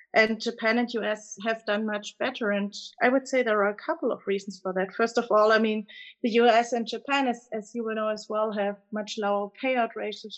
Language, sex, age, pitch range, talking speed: English, female, 30-49, 205-250 Hz, 235 wpm